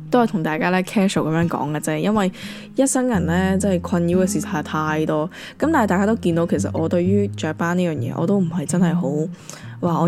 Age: 10-29